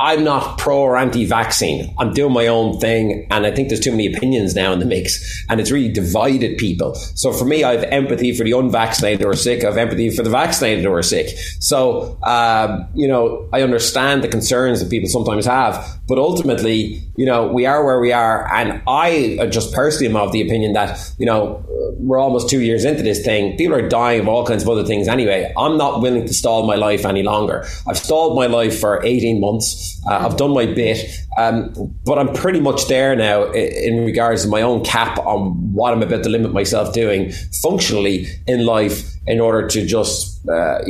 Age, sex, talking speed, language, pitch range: 30-49, male, 215 wpm, English, 105-125 Hz